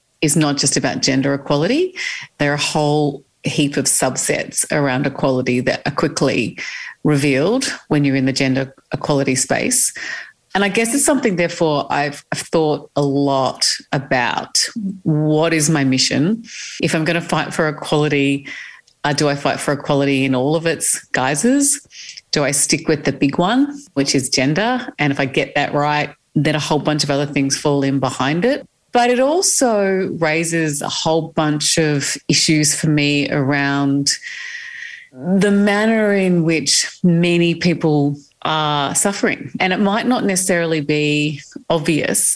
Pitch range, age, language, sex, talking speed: 145-180 Hz, 40-59, English, female, 160 wpm